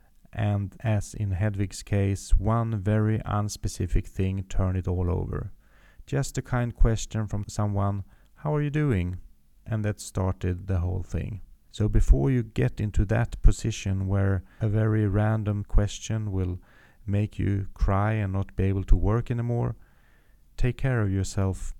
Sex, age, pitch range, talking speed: male, 30-49, 95-110 Hz, 155 wpm